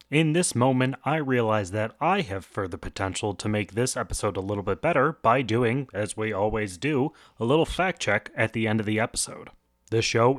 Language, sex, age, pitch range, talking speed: English, male, 30-49, 105-140 Hz, 210 wpm